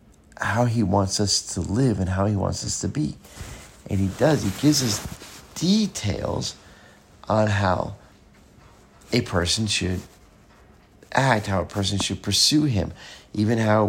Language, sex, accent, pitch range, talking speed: English, male, American, 95-115 Hz, 145 wpm